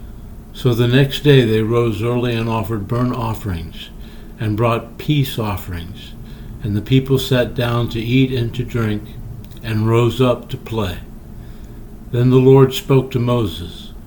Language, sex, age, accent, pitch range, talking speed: English, male, 60-79, American, 110-130 Hz, 155 wpm